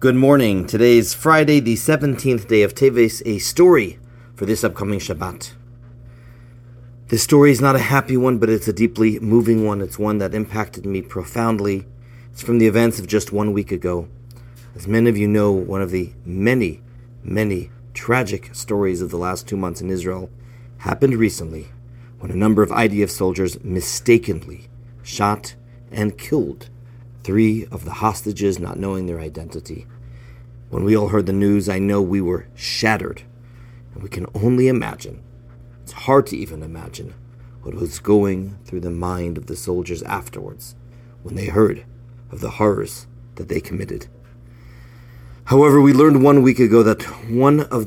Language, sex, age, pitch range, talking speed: English, male, 40-59, 95-120 Hz, 165 wpm